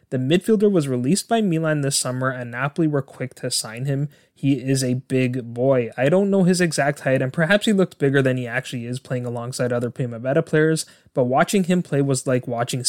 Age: 20-39